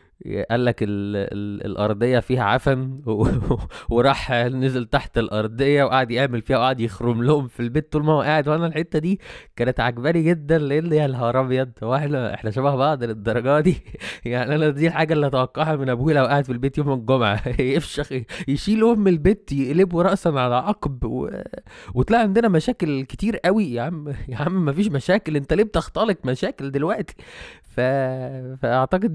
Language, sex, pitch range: Arabic, male, 105-150 Hz